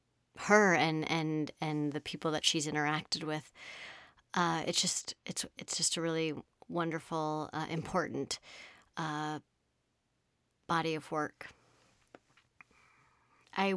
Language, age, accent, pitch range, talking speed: English, 30-49, American, 155-185 Hz, 115 wpm